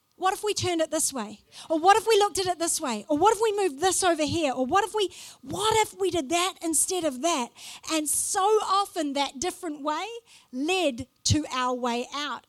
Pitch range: 290-360 Hz